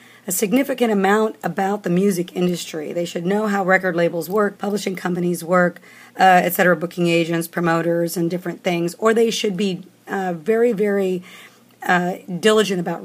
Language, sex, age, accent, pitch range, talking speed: English, female, 50-69, American, 170-200 Hz, 165 wpm